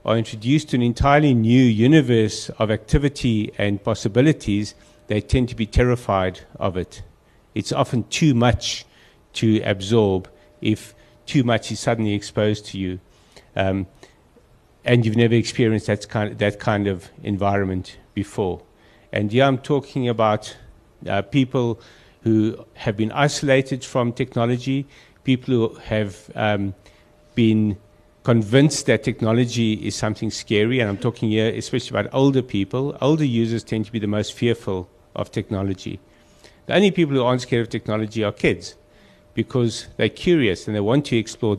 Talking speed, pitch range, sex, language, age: 155 wpm, 100-125 Hz, male, English, 50-69